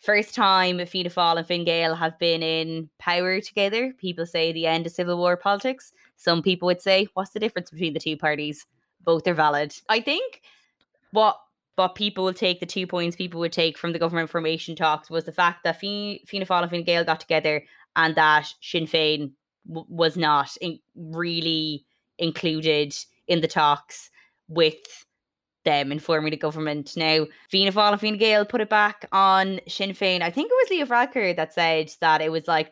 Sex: female